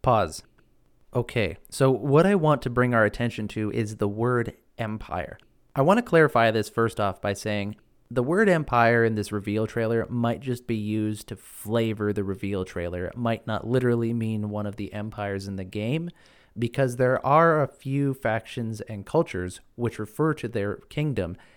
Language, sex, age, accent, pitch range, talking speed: English, male, 30-49, American, 105-125 Hz, 180 wpm